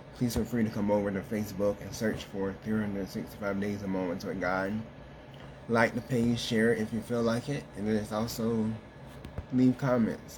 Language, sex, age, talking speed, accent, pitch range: English, male, 20-39, 190 wpm, American, 100-120 Hz